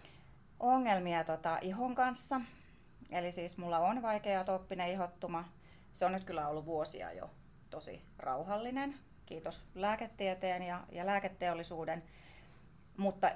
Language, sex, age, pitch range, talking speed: Finnish, female, 30-49, 155-195 Hz, 110 wpm